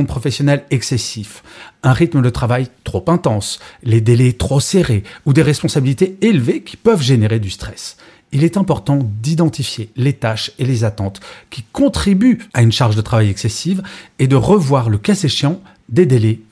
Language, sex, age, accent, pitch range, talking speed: French, male, 40-59, French, 110-155 Hz, 165 wpm